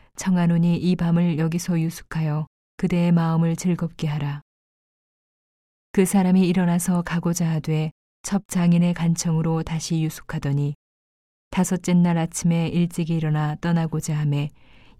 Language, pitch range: Korean, 155-175 Hz